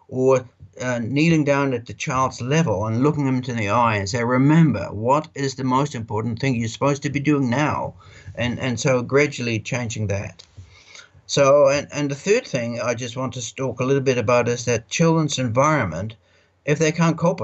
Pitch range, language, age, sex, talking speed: 110-140 Hz, English, 60-79, male, 200 wpm